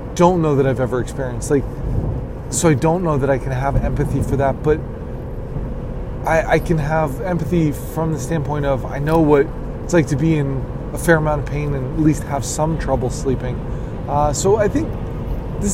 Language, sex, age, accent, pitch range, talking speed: English, male, 20-39, American, 130-160 Hz, 200 wpm